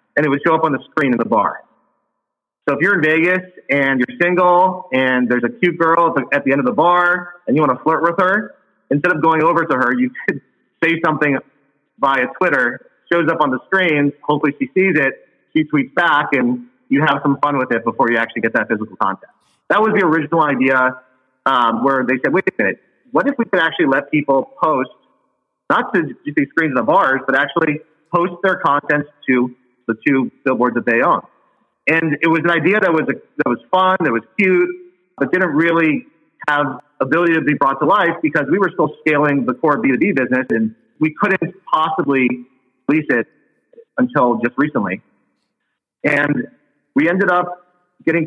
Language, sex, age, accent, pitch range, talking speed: English, male, 30-49, American, 130-180 Hz, 200 wpm